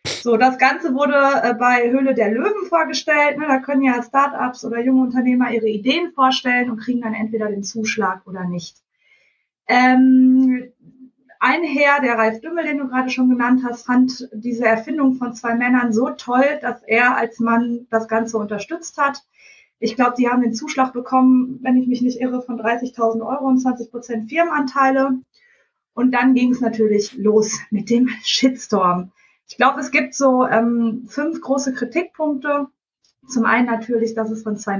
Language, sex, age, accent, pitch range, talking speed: German, female, 20-39, German, 230-275 Hz, 170 wpm